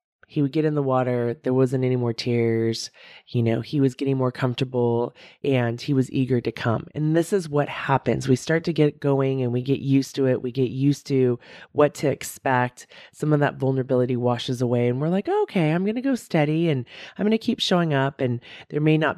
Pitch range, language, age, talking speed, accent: 125-165 Hz, English, 30-49, 230 wpm, American